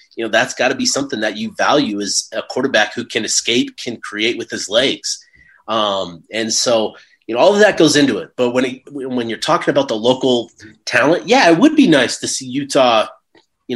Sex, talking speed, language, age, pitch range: male, 225 wpm, English, 30-49, 115-145 Hz